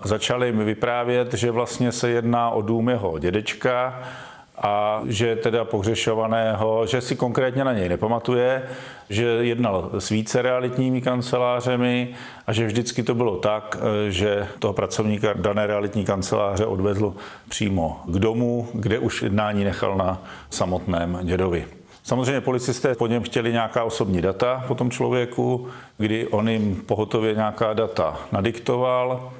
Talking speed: 140 wpm